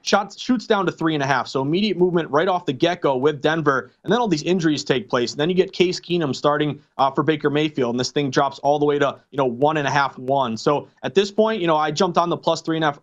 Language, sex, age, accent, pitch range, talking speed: English, male, 30-49, American, 140-170 Hz, 300 wpm